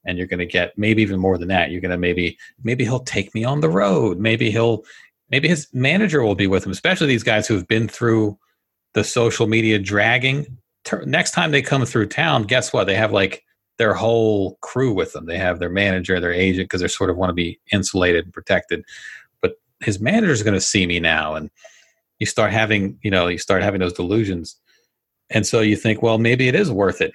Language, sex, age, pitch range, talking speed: English, male, 40-59, 95-125 Hz, 225 wpm